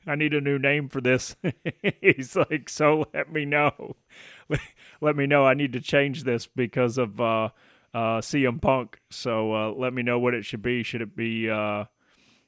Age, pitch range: 30-49, 110-140 Hz